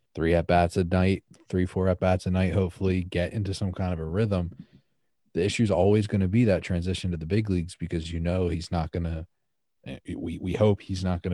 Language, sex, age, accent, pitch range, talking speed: English, male, 30-49, American, 80-95 Hz, 235 wpm